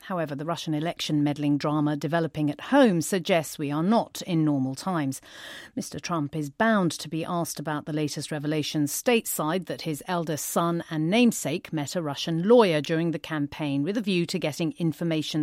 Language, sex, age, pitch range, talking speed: English, female, 40-59, 150-200 Hz, 185 wpm